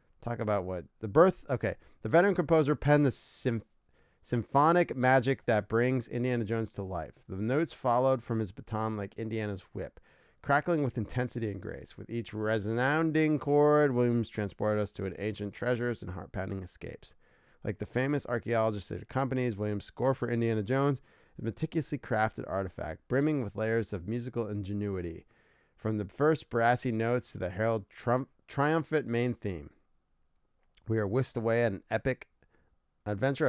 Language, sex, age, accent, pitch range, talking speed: English, male, 30-49, American, 105-130 Hz, 160 wpm